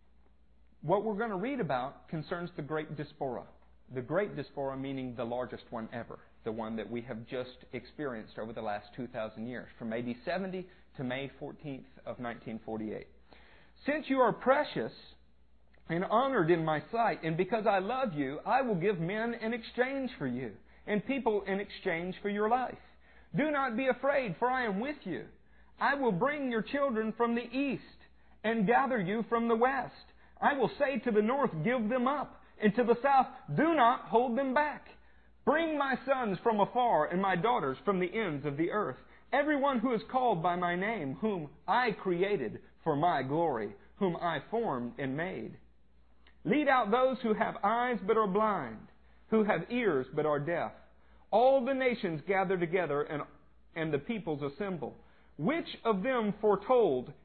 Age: 50-69